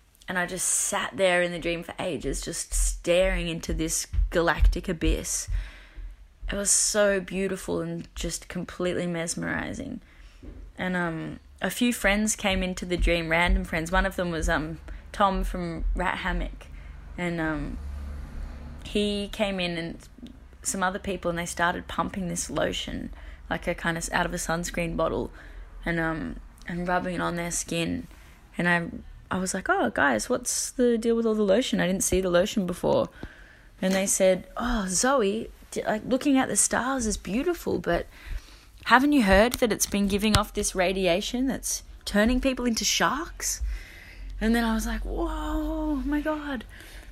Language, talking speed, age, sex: English, 170 wpm, 20-39, female